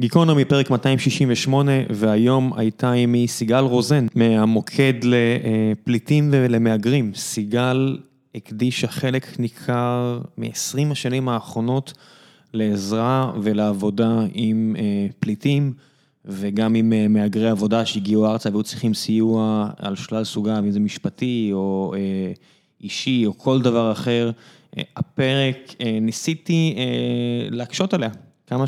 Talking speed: 100 wpm